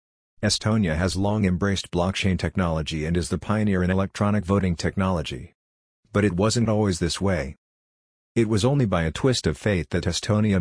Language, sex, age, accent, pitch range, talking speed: English, male, 50-69, American, 85-105 Hz, 170 wpm